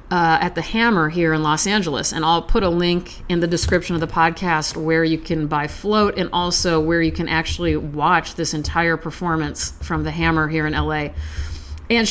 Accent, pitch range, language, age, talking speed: American, 150-190 Hz, English, 40-59, 205 wpm